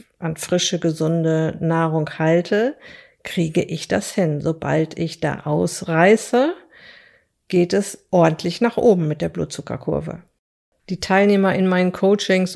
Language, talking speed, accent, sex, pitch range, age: German, 125 wpm, German, female, 175-200 Hz, 50-69